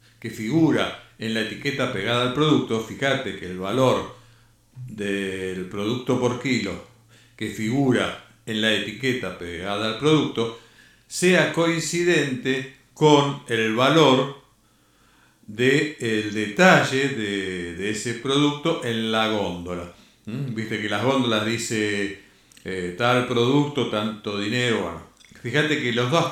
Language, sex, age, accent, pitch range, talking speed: Spanish, male, 50-69, Argentinian, 110-135 Hz, 115 wpm